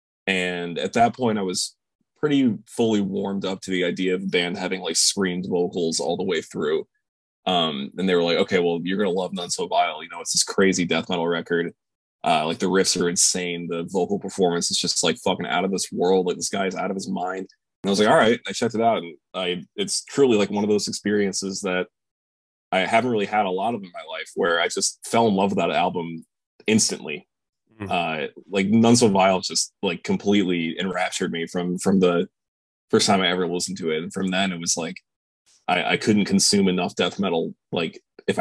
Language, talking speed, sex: English, 225 wpm, male